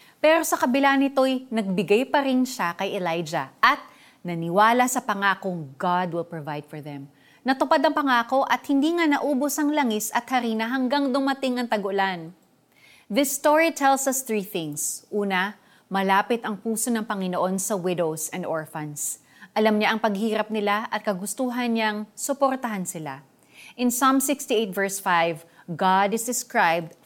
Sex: female